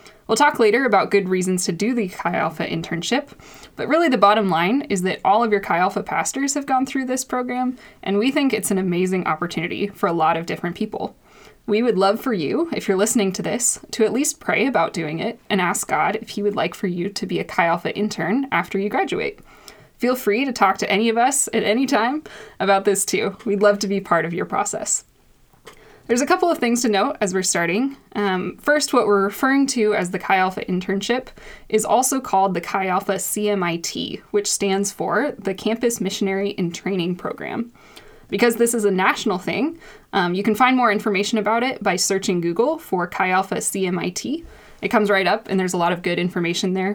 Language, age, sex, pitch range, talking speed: English, 20-39, female, 185-235 Hz, 215 wpm